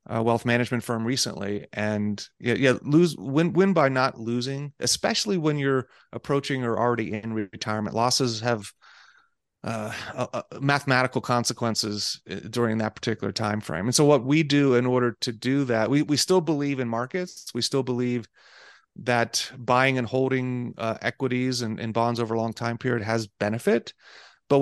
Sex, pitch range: male, 115-140 Hz